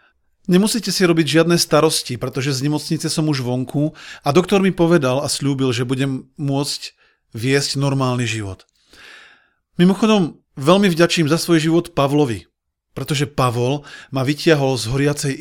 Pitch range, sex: 130-165 Hz, male